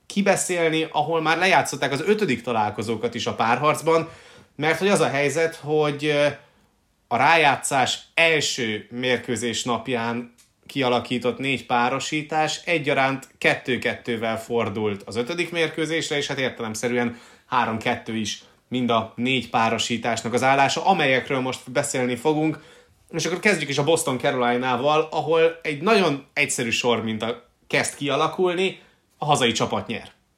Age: 30-49